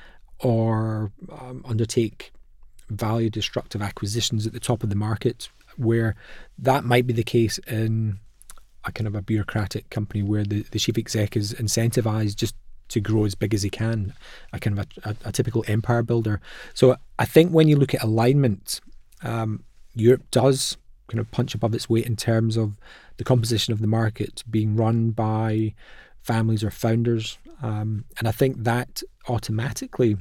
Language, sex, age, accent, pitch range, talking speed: English, male, 20-39, British, 110-120 Hz, 170 wpm